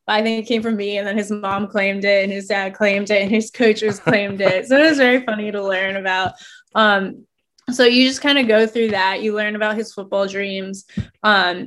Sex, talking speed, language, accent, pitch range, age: female, 235 wpm, English, American, 200-240 Hz, 20-39